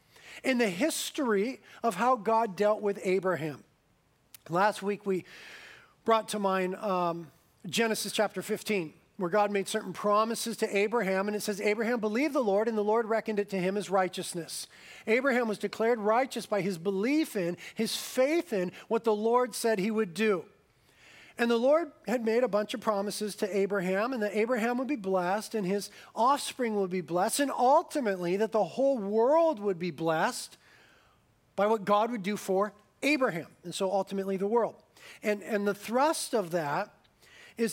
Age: 40-59